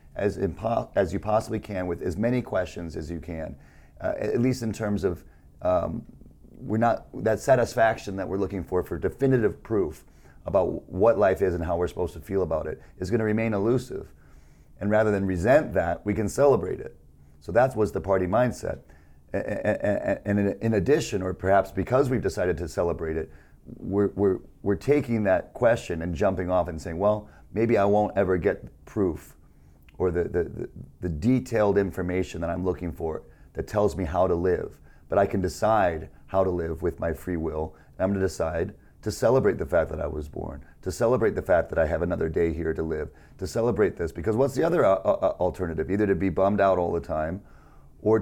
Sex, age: male, 40-59